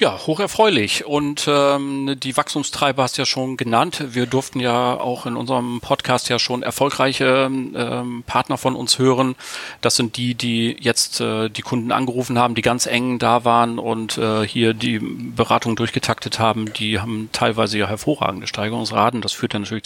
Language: German